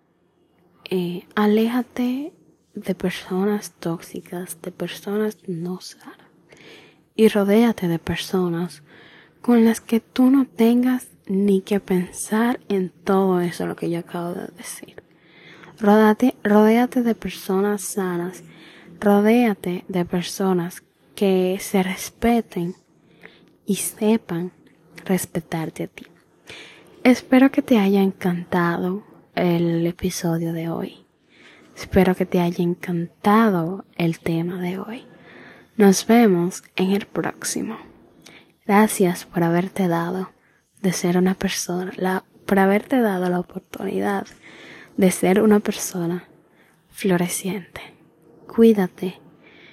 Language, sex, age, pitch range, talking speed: Spanish, female, 20-39, 175-210 Hz, 105 wpm